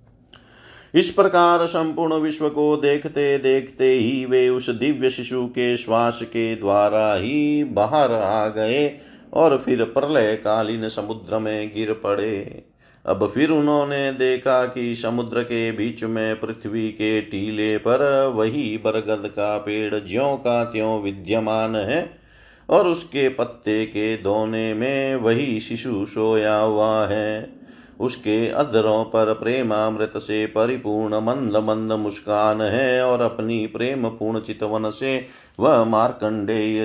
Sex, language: male, Hindi